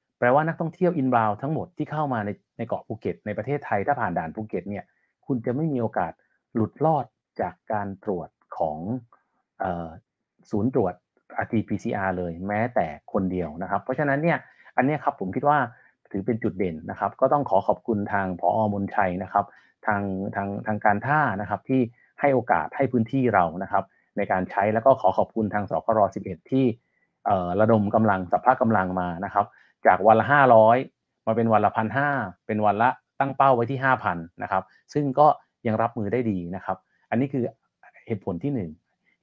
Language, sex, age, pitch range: Thai, male, 30-49, 100-130 Hz